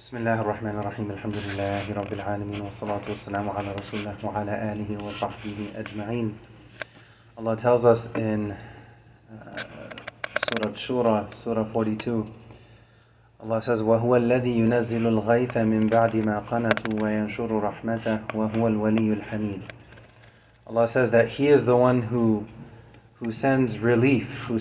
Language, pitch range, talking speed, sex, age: English, 110-125 Hz, 95 wpm, male, 30-49